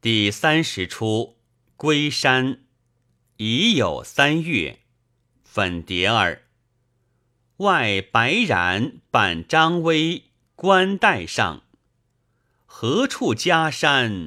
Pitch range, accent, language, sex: 115-160 Hz, native, Chinese, male